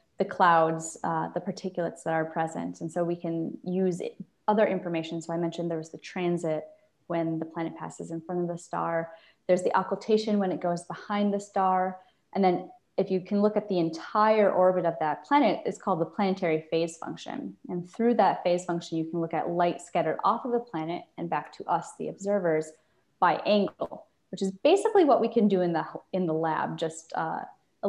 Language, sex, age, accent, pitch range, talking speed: English, female, 20-39, American, 165-195 Hz, 210 wpm